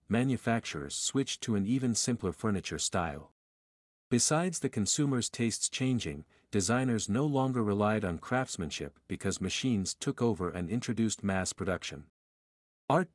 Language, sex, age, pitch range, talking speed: English, male, 50-69, 90-125 Hz, 130 wpm